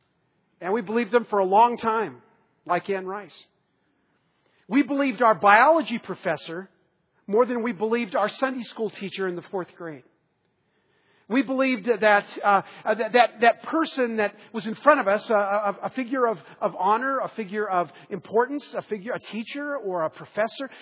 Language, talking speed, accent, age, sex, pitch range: English, 175 wpm, American, 50-69, male, 185-235 Hz